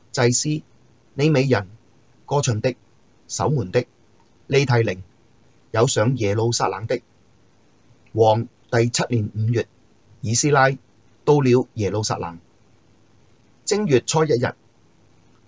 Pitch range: 110-130 Hz